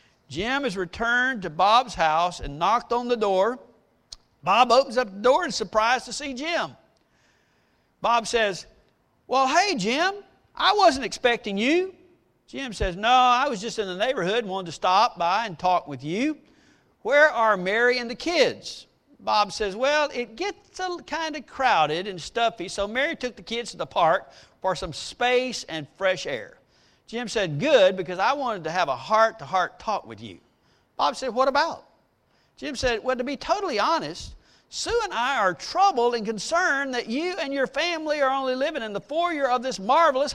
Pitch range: 220-300 Hz